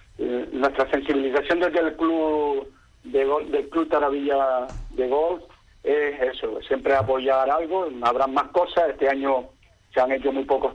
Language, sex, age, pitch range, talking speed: Spanish, male, 40-59, 125-160 Hz, 140 wpm